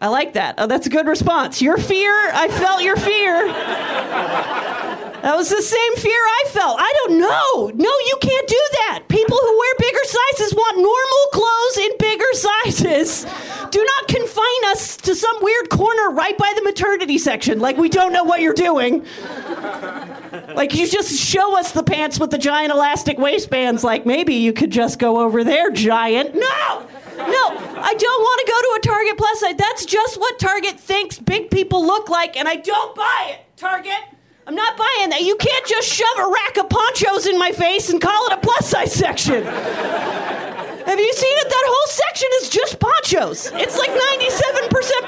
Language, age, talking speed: English, 40-59, 190 wpm